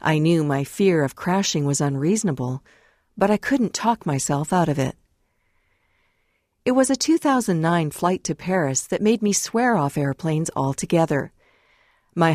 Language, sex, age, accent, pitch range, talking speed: English, female, 50-69, American, 145-190 Hz, 150 wpm